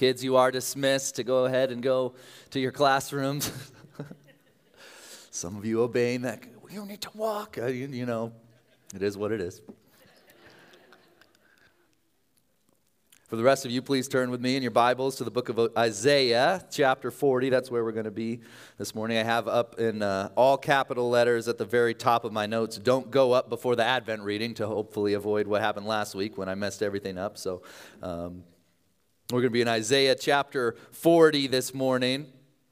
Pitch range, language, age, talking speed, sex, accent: 115-140 Hz, English, 30-49, 190 wpm, male, American